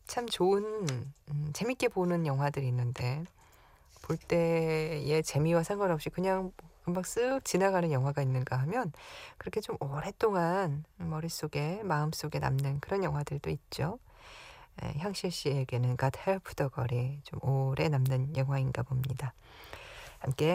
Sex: female